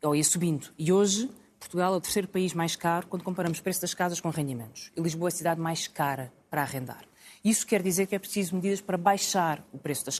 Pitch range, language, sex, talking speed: 160-210 Hz, Portuguese, female, 240 wpm